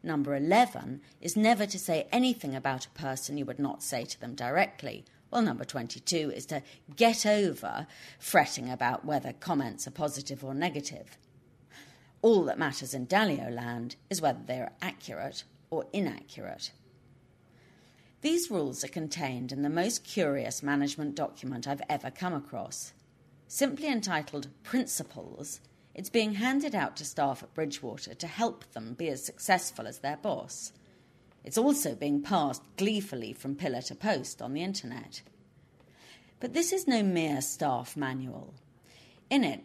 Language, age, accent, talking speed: English, 40-59, British, 150 wpm